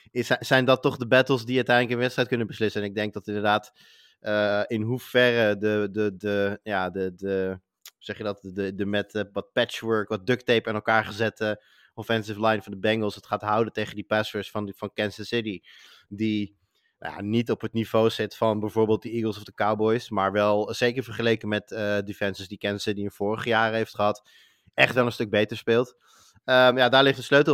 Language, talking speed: Dutch, 185 wpm